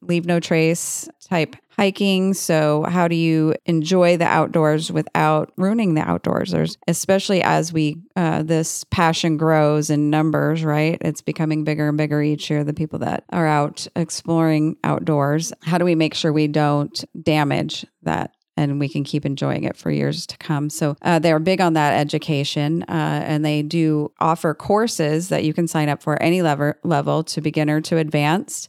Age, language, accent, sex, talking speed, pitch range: 30-49, English, American, female, 175 wpm, 150-170 Hz